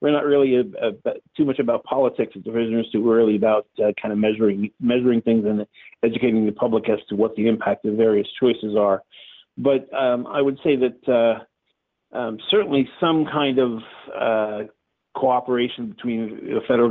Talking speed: 185 wpm